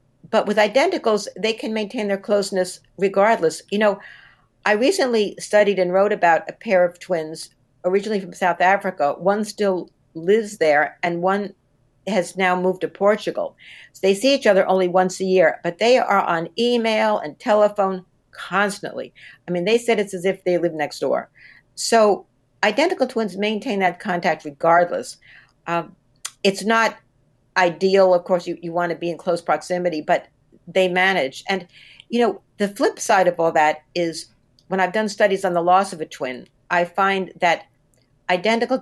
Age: 60-79